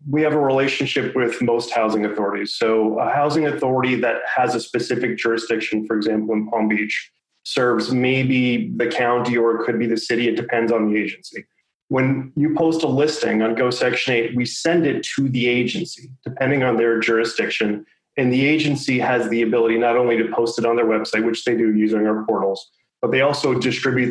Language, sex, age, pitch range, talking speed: English, male, 30-49, 115-130 Hz, 200 wpm